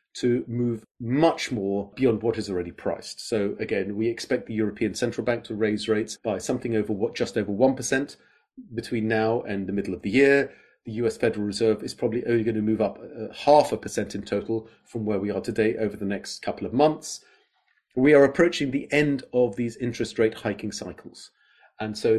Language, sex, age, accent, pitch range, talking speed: English, male, 40-59, British, 105-125 Hz, 205 wpm